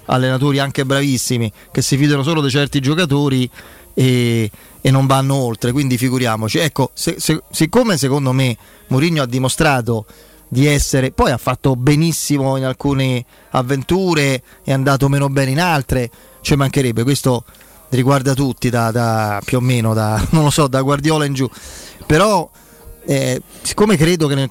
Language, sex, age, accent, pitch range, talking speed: Italian, male, 30-49, native, 125-155 Hz, 145 wpm